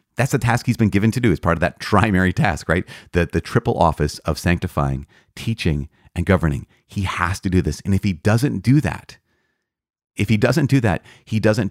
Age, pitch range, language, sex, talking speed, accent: 30-49, 80-105 Hz, English, male, 215 wpm, American